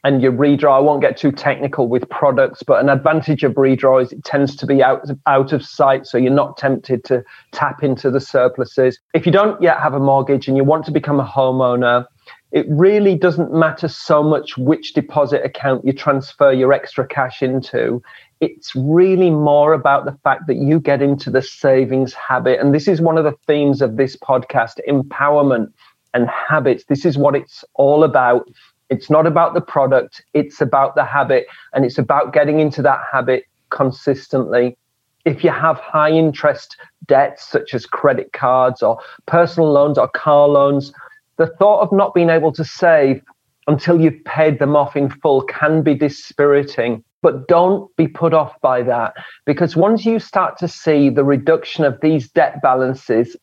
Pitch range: 130-155 Hz